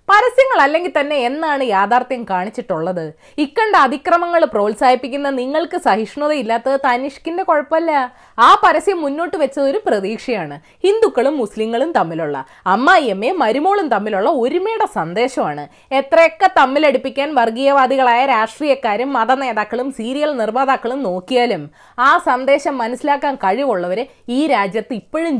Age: 20-39